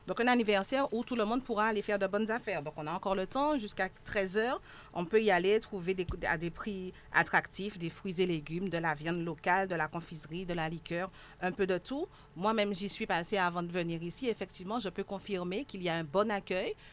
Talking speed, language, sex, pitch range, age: 240 wpm, French, female, 175-215 Hz, 40-59